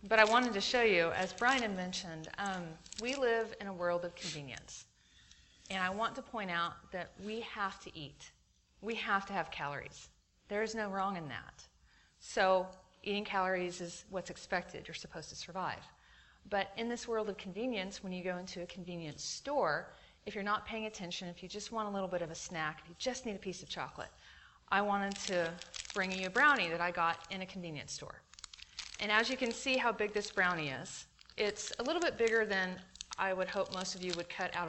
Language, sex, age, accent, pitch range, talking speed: English, female, 40-59, American, 170-215 Hz, 215 wpm